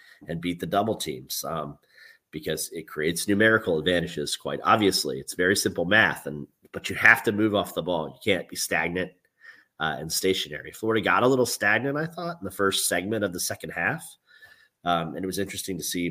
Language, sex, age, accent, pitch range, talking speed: English, male, 30-49, American, 85-105 Hz, 205 wpm